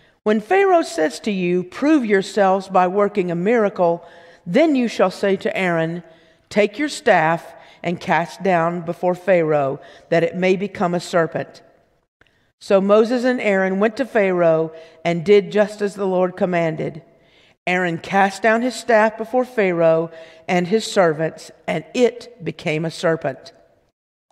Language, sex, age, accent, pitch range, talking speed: English, female, 50-69, American, 165-205 Hz, 150 wpm